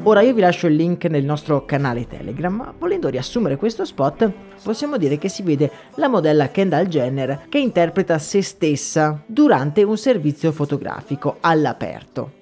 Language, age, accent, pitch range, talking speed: Italian, 30-49, native, 145-200 Hz, 160 wpm